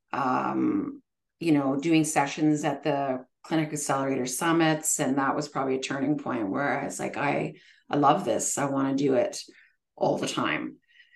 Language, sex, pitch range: English, female, 145-175 Hz